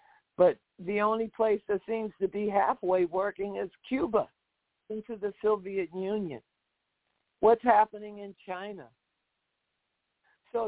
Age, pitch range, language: 60-79, 175-215 Hz, English